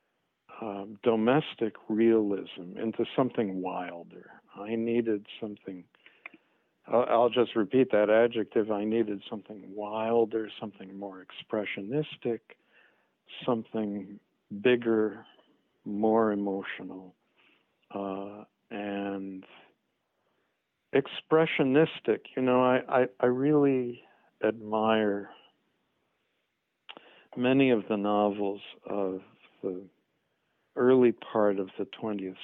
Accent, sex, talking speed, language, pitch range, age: American, male, 85 wpm, English, 100-125 Hz, 50-69